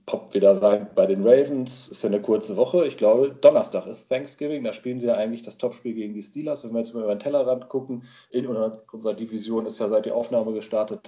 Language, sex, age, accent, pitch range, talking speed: German, male, 40-59, German, 110-150 Hz, 235 wpm